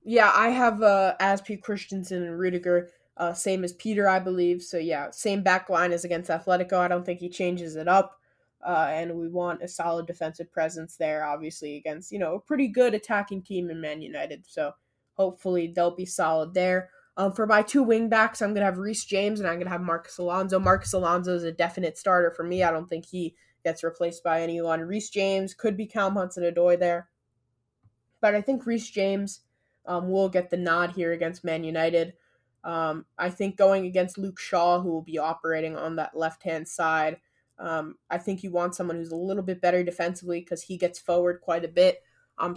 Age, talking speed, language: 20-39, 205 wpm, English